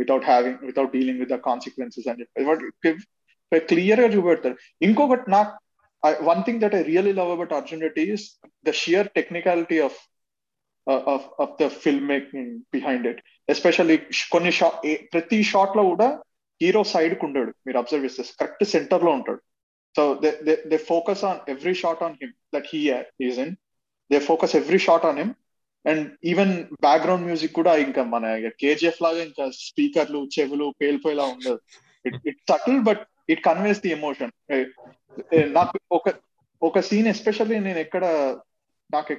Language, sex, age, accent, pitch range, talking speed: English, male, 20-39, Indian, 145-195 Hz, 120 wpm